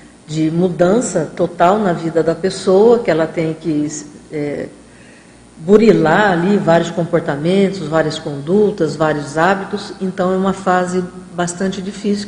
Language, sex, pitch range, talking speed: Portuguese, female, 175-210 Hz, 125 wpm